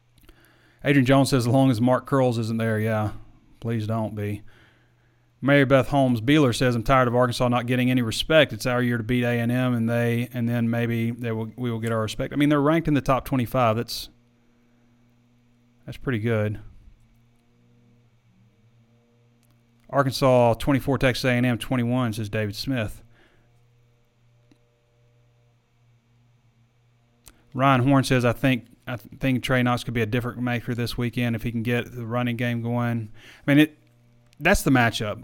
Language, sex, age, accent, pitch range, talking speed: English, male, 30-49, American, 115-130 Hz, 160 wpm